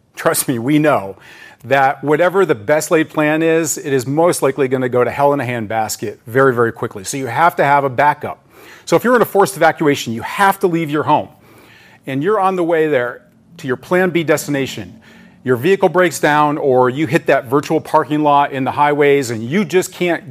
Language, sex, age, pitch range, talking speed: English, male, 40-59, 130-160 Hz, 220 wpm